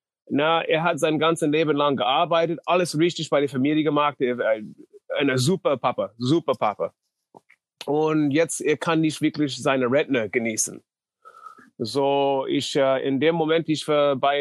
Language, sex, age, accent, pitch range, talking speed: English, male, 30-49, German, 130-160 Hz, 160 wpm